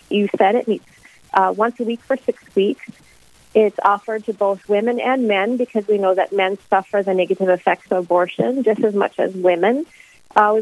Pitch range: 185-220 Hz